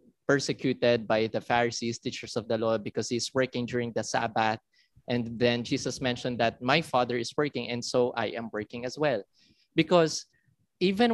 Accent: Filipino